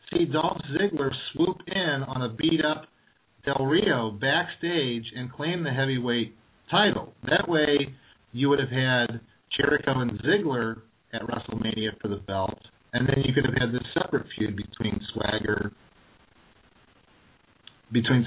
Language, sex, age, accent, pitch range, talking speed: English, male, 40-59, American, 115-150 Hz, 140 wpm